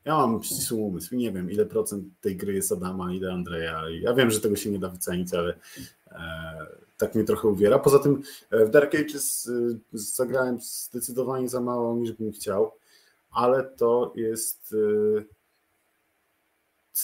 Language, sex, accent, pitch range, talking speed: Polish, male, native, 105-120 Hz, 160 wpm